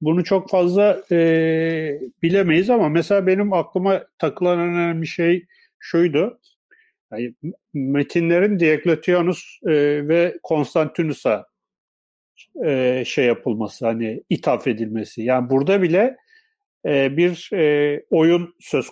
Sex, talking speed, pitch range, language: male, 105 wpm, 135-180 Hz, Turkish